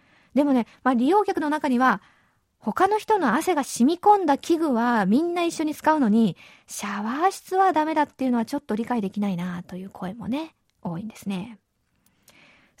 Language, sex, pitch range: Japanese, female, 215-290 Hz